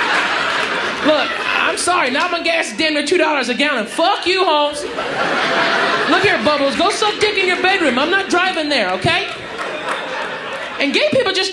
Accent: American